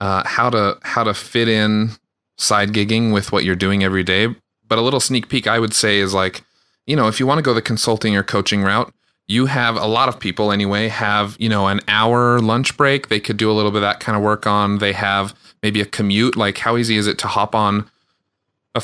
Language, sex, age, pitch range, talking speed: English, male, 30-49, 100-115 Hz, 245 wpm